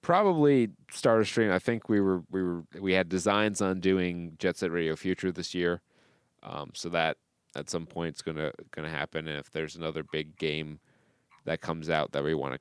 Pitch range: 80-105 Hz